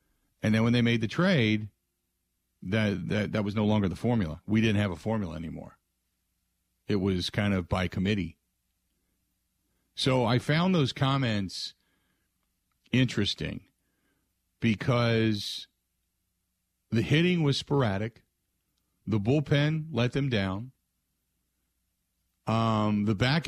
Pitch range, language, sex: 90-115 Hz, English, male